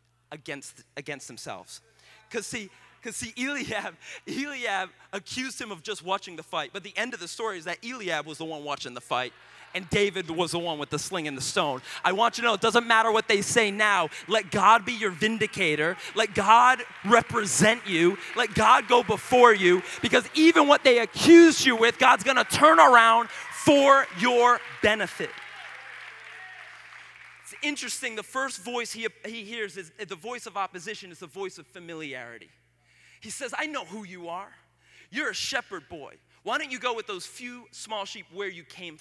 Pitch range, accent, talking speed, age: 190-250 Hz, American, 190 wpm, 30-49